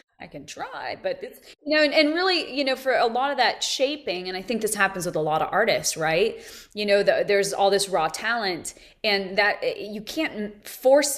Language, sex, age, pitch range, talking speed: English, female, 20-39, 195-275 Hz, 220 wpm